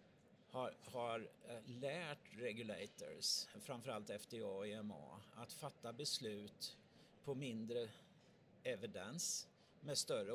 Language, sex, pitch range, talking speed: Swedish, male, 115-150 Hz, 95 wpm